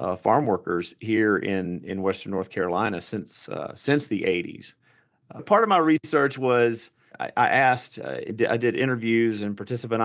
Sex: male